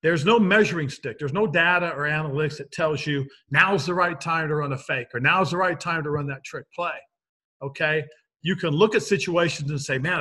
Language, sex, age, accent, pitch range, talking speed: English, male, 40-59, American, 140-175 Hz, 230 wpm